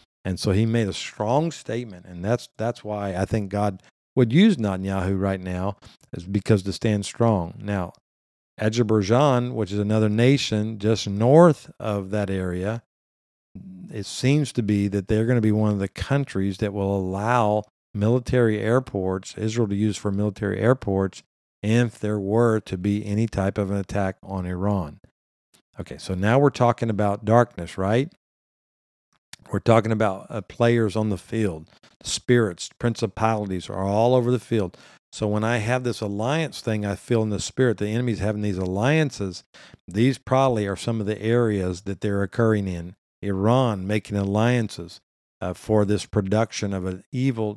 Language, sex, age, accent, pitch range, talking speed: English, male, 50-69, American, 100-115 Hz, 165 wpm